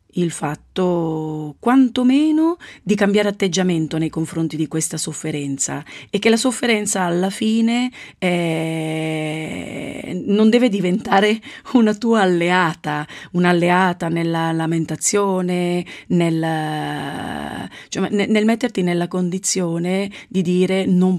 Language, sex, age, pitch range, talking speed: Italian, female, 30-49, 160-195 Hz, 105 wpm